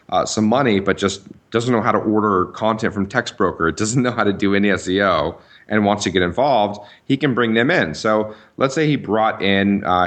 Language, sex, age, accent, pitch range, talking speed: English, male, 30-49, American, 95-110 Hz, 225 wpm